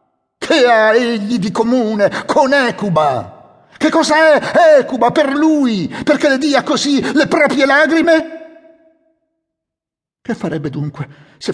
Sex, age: male, 50-69